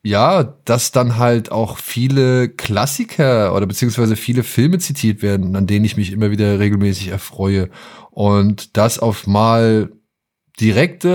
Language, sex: German, male